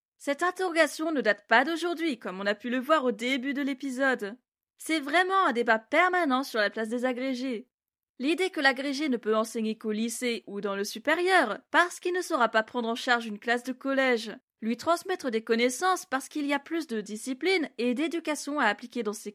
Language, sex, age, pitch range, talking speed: French, female, 20-39, 235-315 Hz, 210 wpm